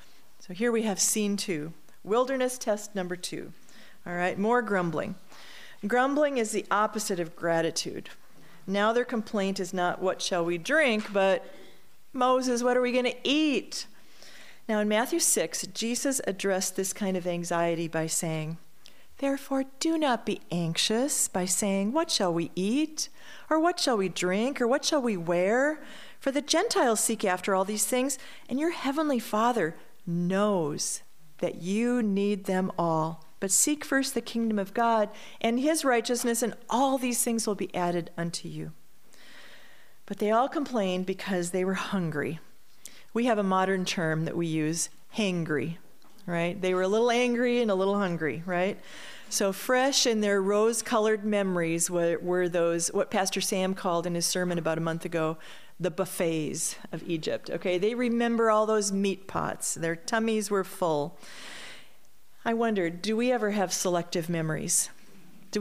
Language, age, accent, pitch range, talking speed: English, 40-59, American, 180-240 Hz, 165 wpm